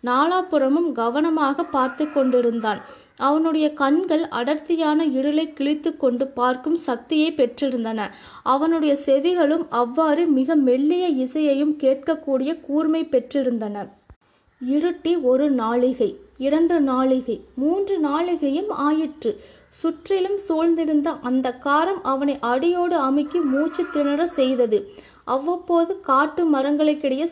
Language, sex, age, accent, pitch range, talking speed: Tamil, female, 20-39, native, 260-325 Hz, 95 wpm